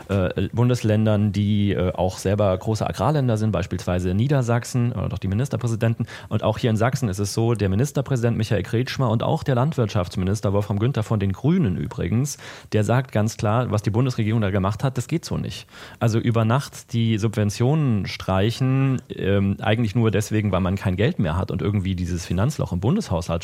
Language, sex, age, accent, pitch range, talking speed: German, male, 30-49, German, 95-120 Hz, 180 wpm